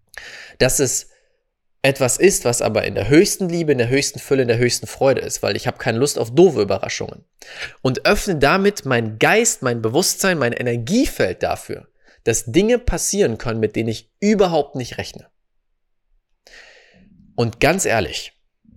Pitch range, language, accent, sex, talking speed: 125-175 Hz, German, German, male, 160 wpm